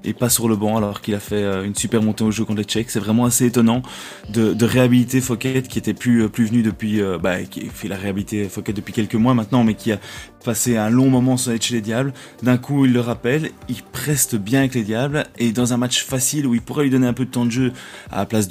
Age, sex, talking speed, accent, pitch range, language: 20-39, male, 270 wpm, French, 110-125 Hz, French